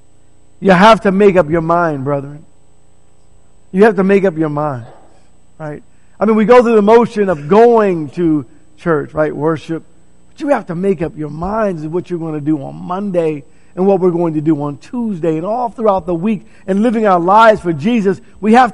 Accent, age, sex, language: American, 50-69, male, English